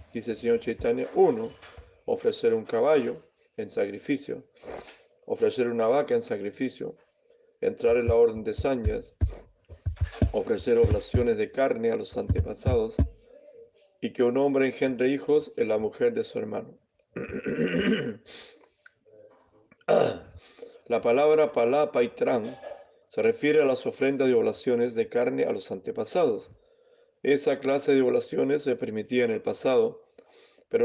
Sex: male